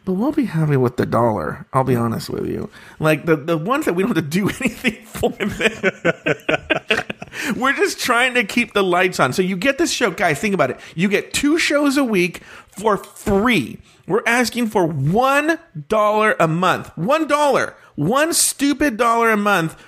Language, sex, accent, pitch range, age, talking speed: English, male, American, 165-235 Hz, 40-59, 185 wpm